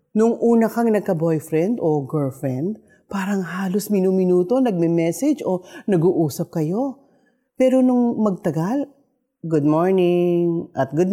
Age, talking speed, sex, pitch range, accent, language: 40-59, 110 wpm, female, 160-260 Hz, native, Filipino